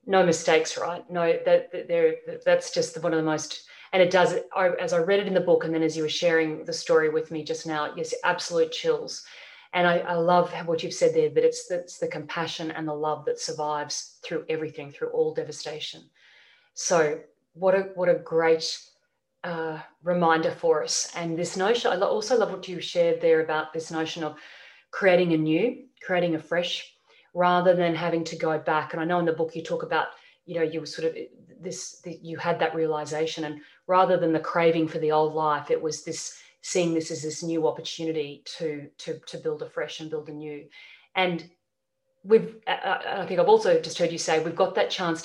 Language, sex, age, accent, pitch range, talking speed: English, female, 30-49, Australian, 160-200 Hz, 205 wpm